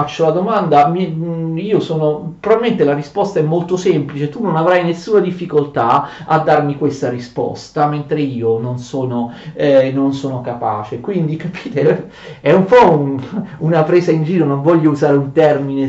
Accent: native